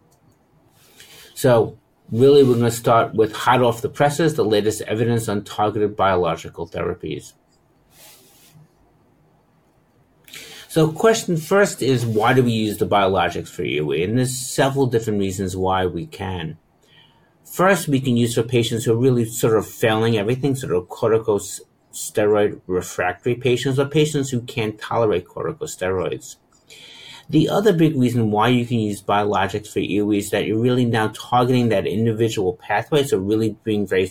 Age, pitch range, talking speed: 50-69, 105-135 Hz, 150 wpm